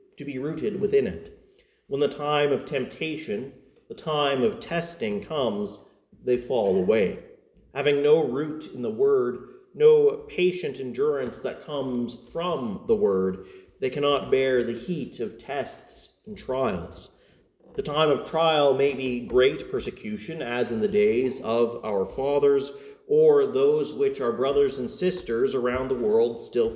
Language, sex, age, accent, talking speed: English, male, 40-59, American, 150 wpm